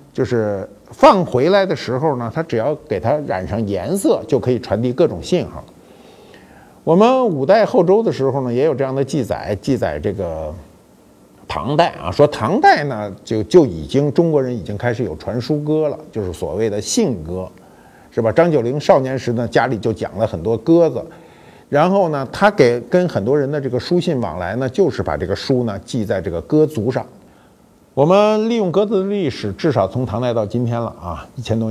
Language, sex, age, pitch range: Chinese, male, 50-69, 110-155 Hz